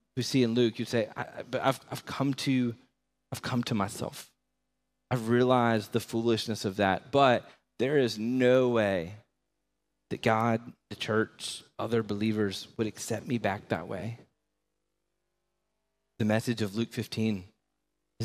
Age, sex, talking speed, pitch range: 30-49, male, 150 wpm, 110-125 Hz